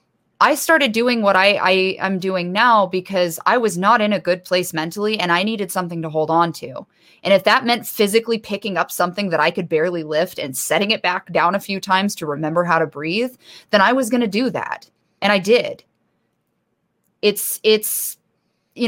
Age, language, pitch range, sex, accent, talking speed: 20-39, English, 170-215 Hz, female, American, 205 wpm